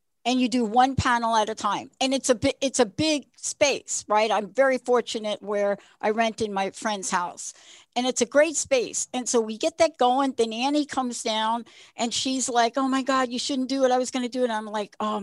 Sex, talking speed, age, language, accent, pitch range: female, 240 wpm, 60-79, English, American, 220-280 Hz